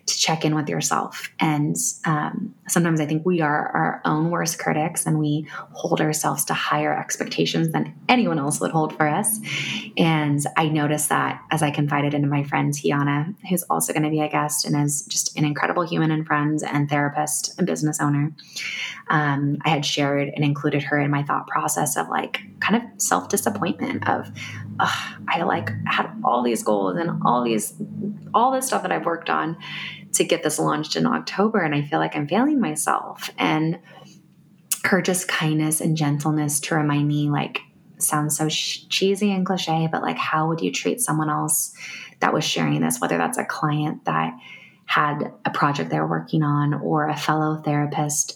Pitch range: 145-165 Hz